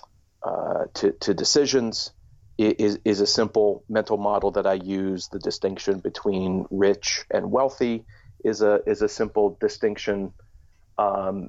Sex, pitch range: male, 95-115 Hz